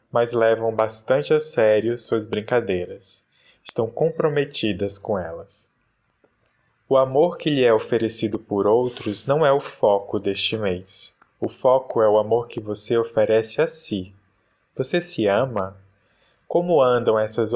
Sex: male